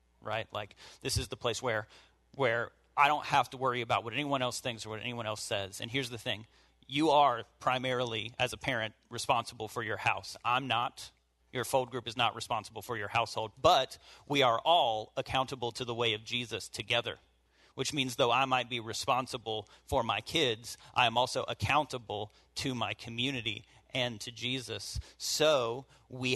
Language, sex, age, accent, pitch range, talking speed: English, male, 40-59, American, 110-125 Hz, 185 wpm